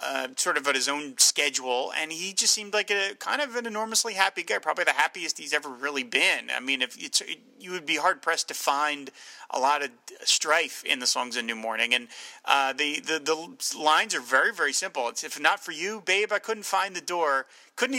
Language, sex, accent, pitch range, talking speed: English, male, American, 140-190 Hz, 235 wpm